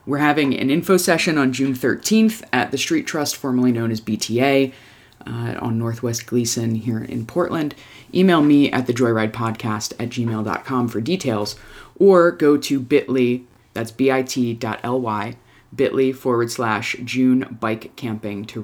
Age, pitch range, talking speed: 20-39, 115-140 Hz, 150 wpm